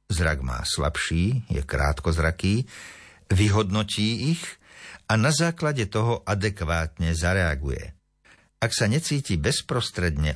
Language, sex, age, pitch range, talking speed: Slovak, male, 50-69, 85-115 Hz, 100 wpm